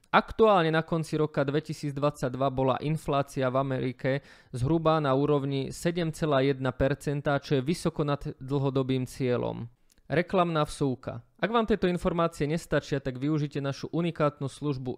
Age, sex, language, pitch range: 20-39, male, Slovak, 135-160 Hz